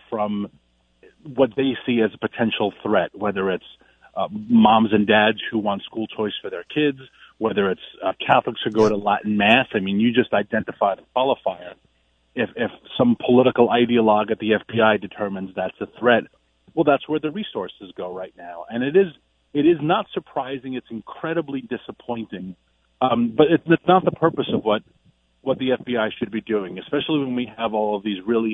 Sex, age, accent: male, 40-59, American